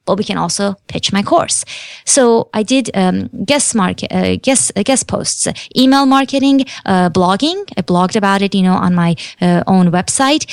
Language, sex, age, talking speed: English, female, 20-39, 195 wpm